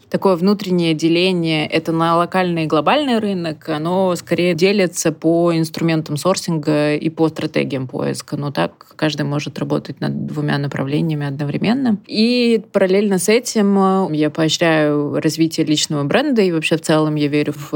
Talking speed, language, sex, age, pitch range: 150 wpm, Russian, female, 20-39, 150-170 Hz